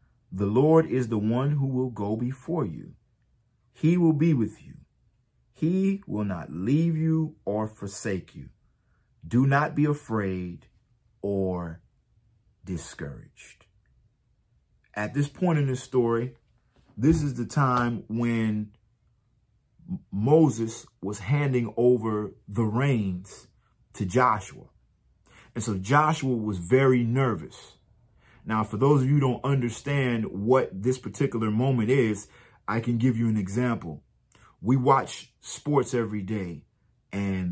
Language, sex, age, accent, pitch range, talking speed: English, male, 40-59, American, 105-130 Hz, 125 wpm